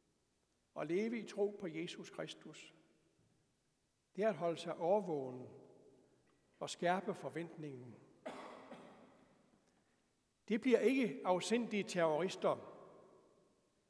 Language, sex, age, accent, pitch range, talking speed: Danish, male, 60-79, native, 175-220 Hz, 90 wpm